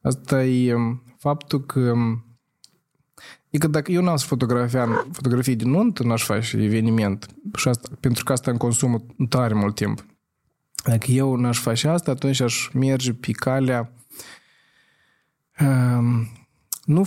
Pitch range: 120-150 Hz